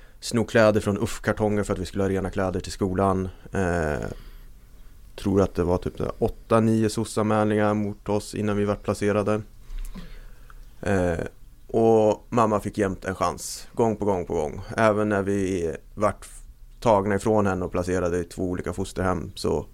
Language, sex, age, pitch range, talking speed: Swedish, male, 20-39, 95-120 Hz, 160 wpm